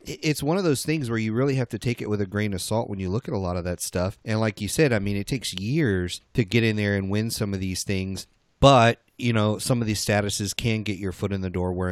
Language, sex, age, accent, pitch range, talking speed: English, male, 30-49, American, 95-120 Hz, 300 wpm